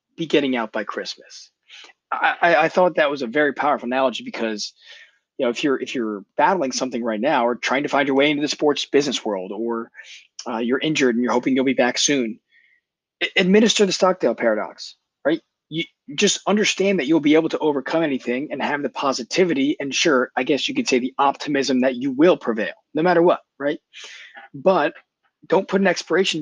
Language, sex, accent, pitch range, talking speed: English, male, American, 125-175 Hz, 200 wpm